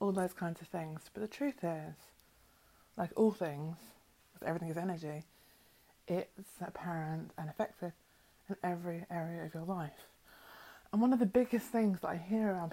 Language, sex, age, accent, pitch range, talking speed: English, female, 20-39, British, 155-185 Hz, 165 wpm